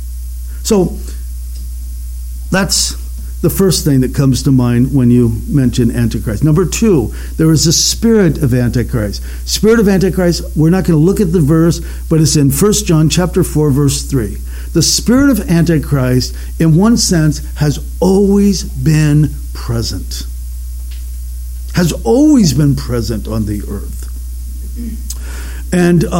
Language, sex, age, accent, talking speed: English, male, 60-79, American, 135 wpm